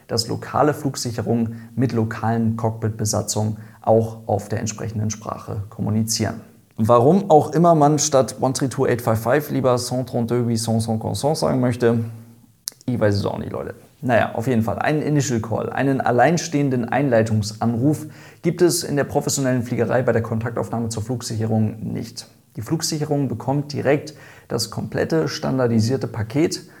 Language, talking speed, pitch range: German, 130 wpm, 110-130 Hz